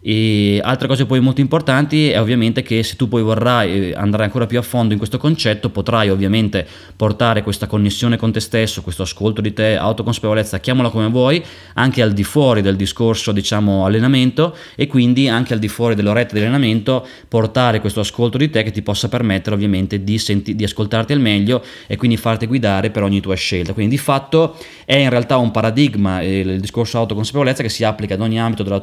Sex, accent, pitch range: male, native, 105-130 Hz